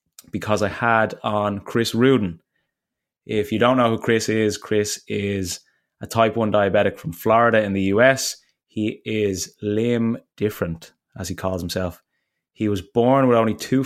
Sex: male